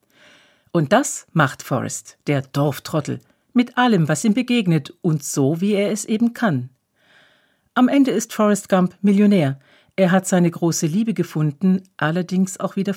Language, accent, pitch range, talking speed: German, German, 150-200 Hz, 155 wpm